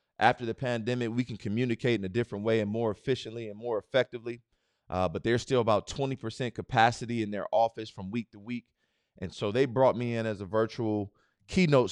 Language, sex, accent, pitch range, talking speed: English, male, American, 100-130 Hz, 200 wpm